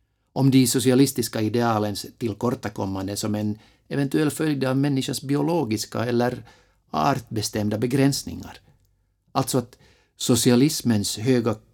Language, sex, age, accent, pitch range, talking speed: English, male, 50-69, Finnish, 95-125 Hz, 95 wpm